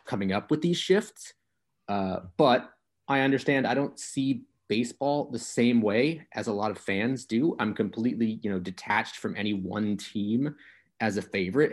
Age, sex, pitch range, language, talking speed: 30-49, male, 100-140 Hz, English, 175 wpm